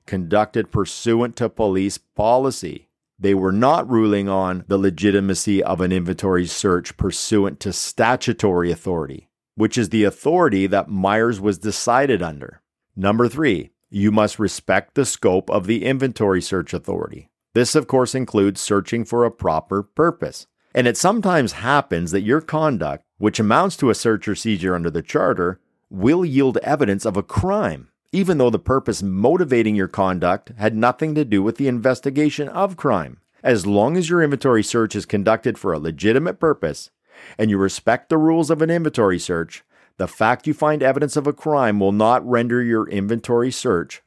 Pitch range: 100-135 Hz